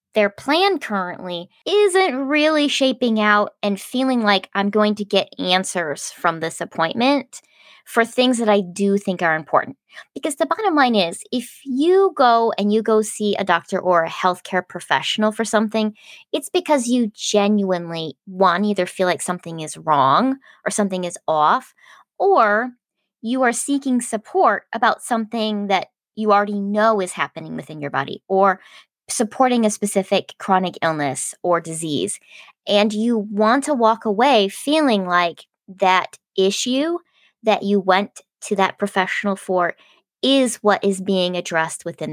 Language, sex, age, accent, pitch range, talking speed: English, female, 20-39, American, 190-245 Hz, 155 wpm